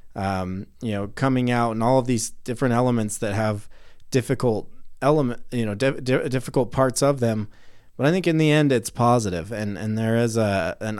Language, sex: English, male